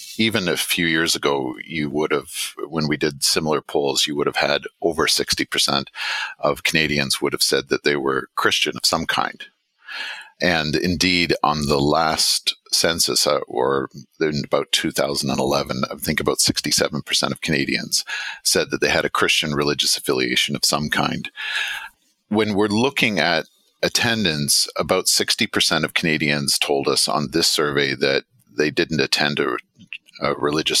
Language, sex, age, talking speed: English, male, 50-69, 155 wpm